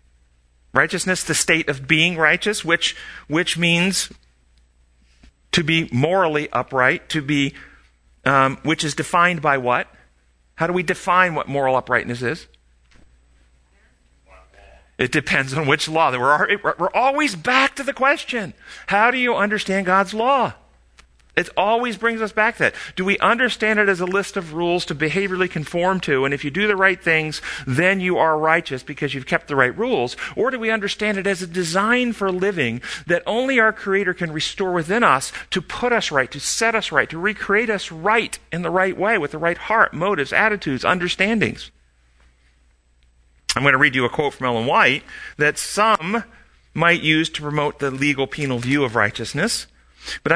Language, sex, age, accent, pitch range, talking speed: English, male, 50-69, American, 130-195 Hz, 180 wpm